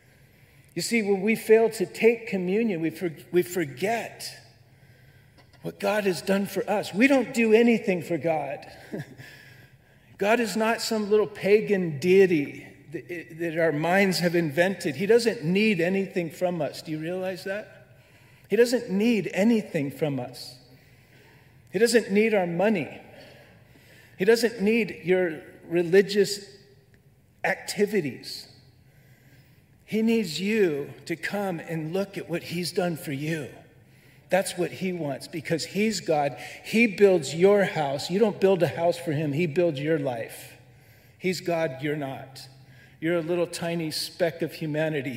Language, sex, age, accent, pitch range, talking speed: English, male, 40-59, American, 135-195 Hz, 145 wpm